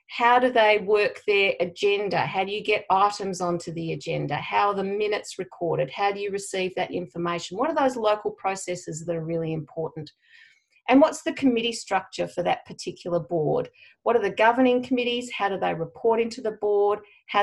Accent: Australian